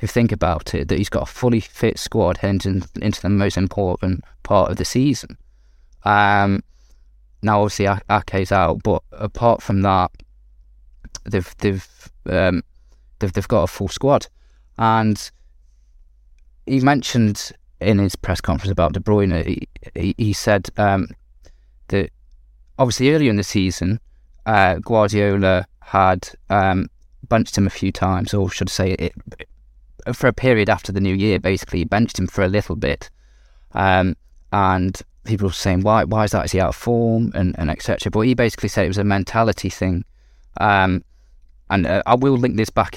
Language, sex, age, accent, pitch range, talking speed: English, male, 20-39, British, 75-105 Hz, 170 wpm